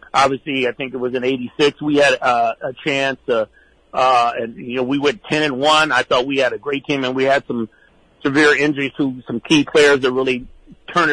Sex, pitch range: male, 135-160 Hz